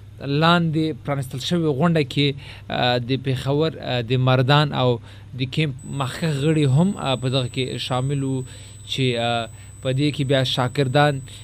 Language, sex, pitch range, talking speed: Urdu, male, 120-145 Hz, 135 wpm